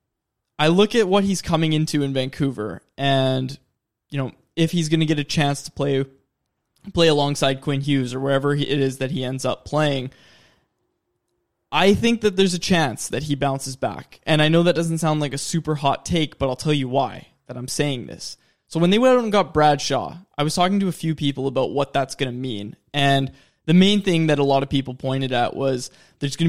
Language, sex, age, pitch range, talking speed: English, male, 20-39, 135-170 Hz, 225 wpm